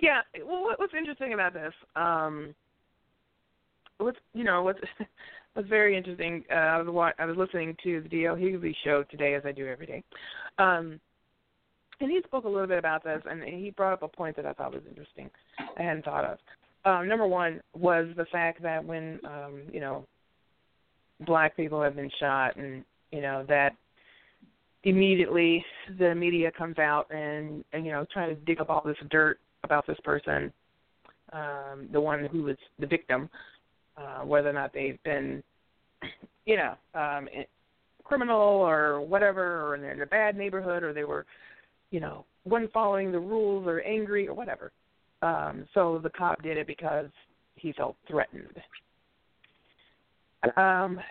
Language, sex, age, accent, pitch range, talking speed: English, female, 20-39, American, 150-190 Hz, 170 wpm